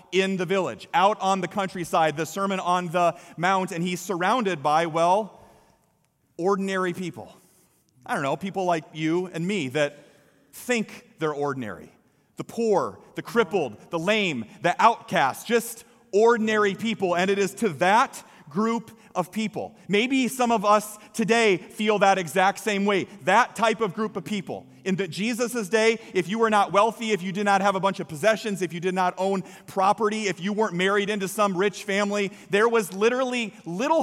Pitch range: 180-220 Hz